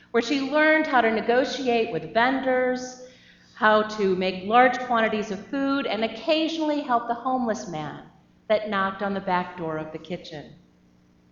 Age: 40-59